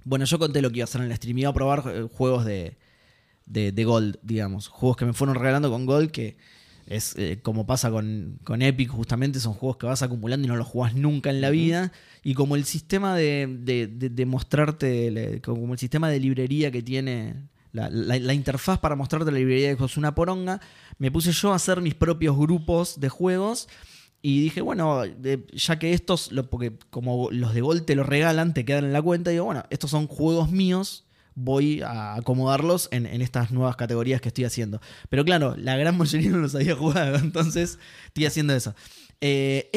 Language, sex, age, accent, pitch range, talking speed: Spanish, male, 20-39, Argentinian, 125-165 Hz, 210 wpm